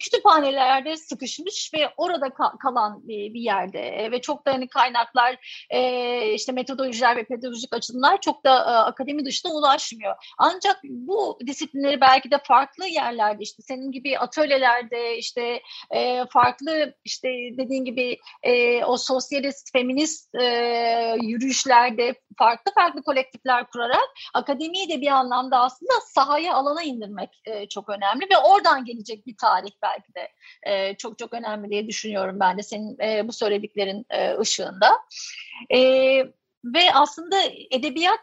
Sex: female